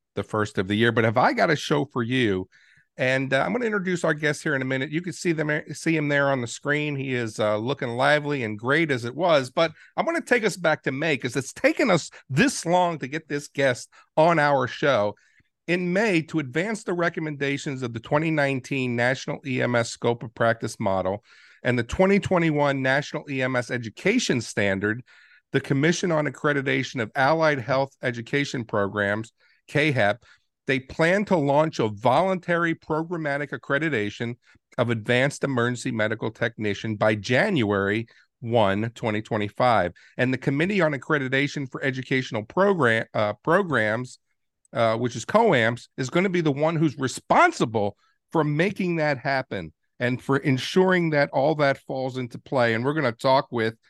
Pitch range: 120-155 Hz